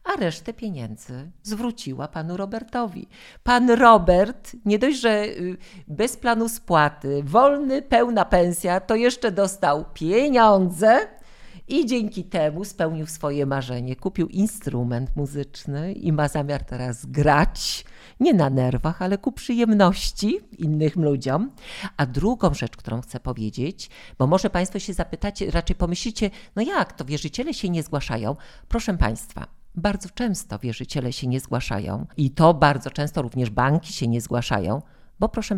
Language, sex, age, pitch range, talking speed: Polish, female, 50-69, 135-205 Hz, 140 wpm